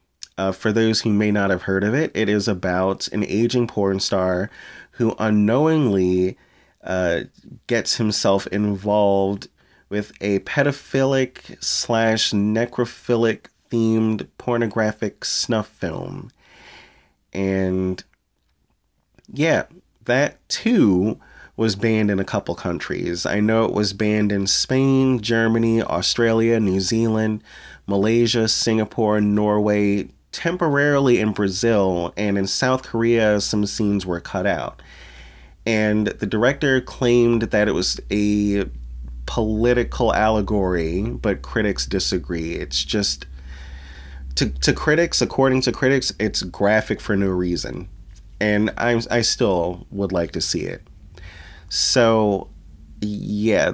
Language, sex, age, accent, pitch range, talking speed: English, male, 30-49, American, 95-115 Hz, 115 wpm